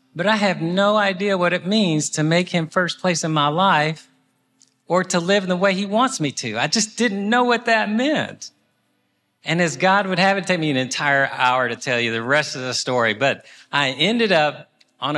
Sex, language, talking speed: male, English, 225 wpm